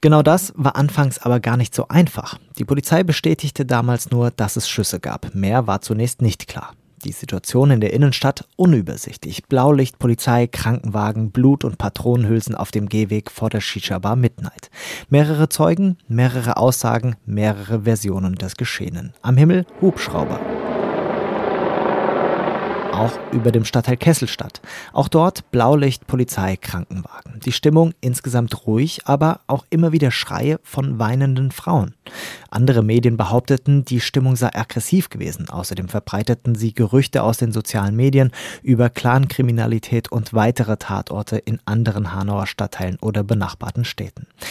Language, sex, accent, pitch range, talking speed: German, male, German, 110-140 Hz, 140 wpm